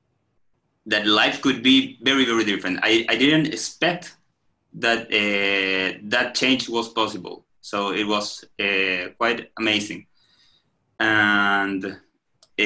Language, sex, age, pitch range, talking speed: English, male, 20-39, 100-120 Hz, 115 wpm